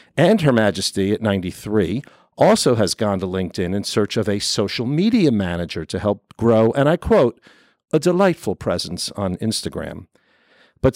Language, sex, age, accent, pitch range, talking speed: English, male, 50-69, American, 100-125 Hz, 160 wpm